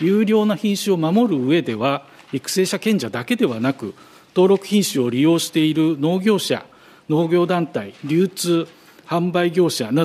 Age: 50-69